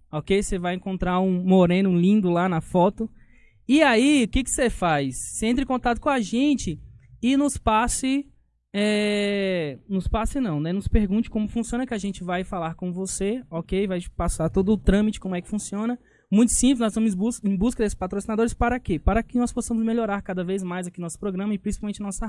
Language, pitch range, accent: Portuguese, 160-220 Hz, Brazilian